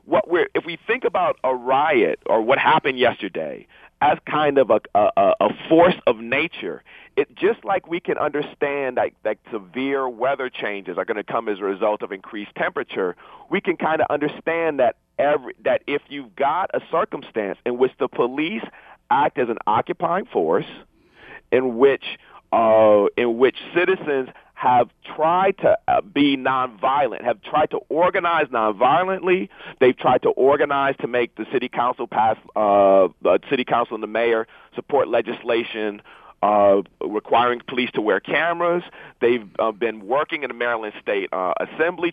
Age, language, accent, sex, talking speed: 40-59, English, American, male, 165 wpm